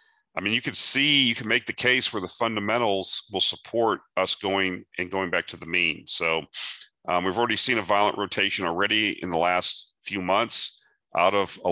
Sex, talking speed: male, 205 wpm